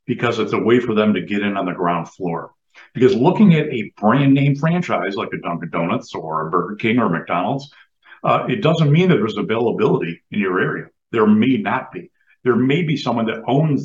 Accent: American